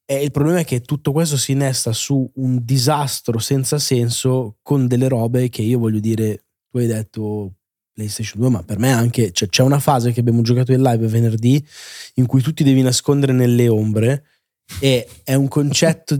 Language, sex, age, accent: Italian, male, 20-39, native